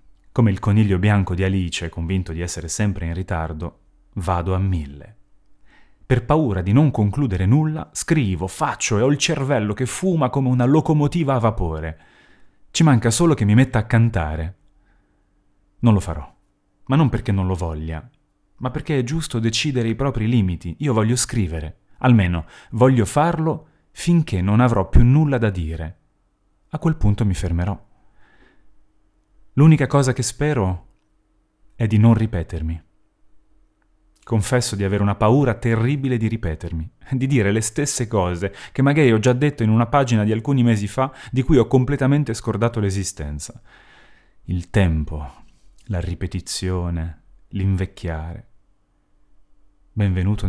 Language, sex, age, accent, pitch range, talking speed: Italian, male, 30-49, native, 95-125 Hz, 145 wpm